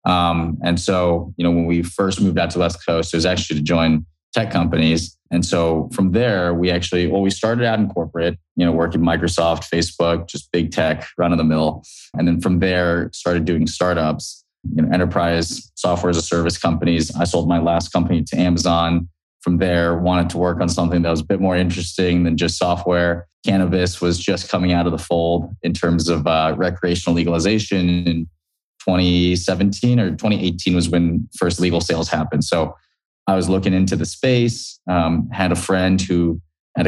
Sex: male